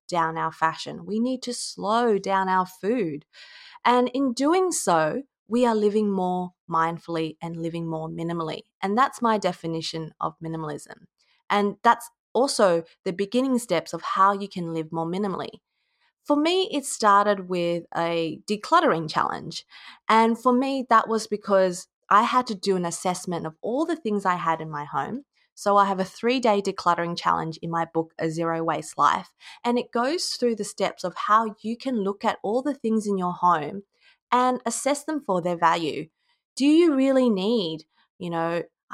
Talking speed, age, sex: 180 wpm, 20-39, female